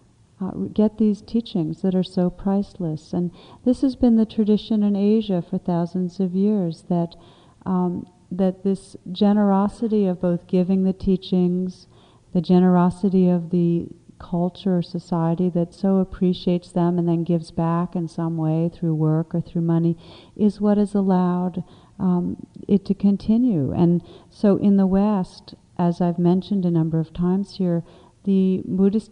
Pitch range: 170-195 Hz